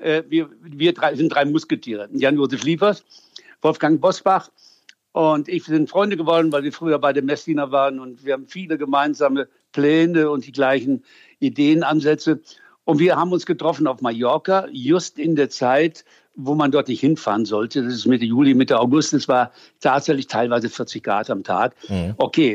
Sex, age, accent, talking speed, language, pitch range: male, 60-79, German, 170 wpm, German, 135-165 Hz